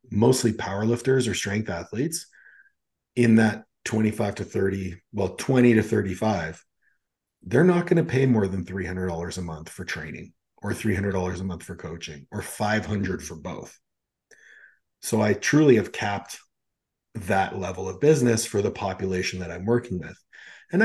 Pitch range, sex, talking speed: 95-125 Hz, male, 155 wpm